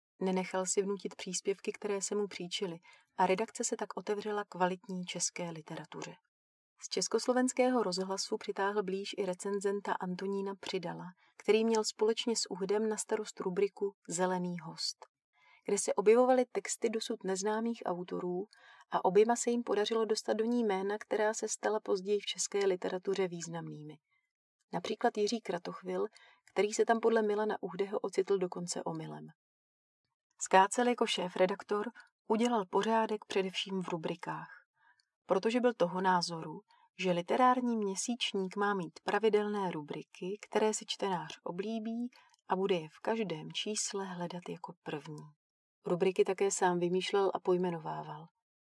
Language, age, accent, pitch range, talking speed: Czech, 30-49, native, 185-220 Hz, 135 wpm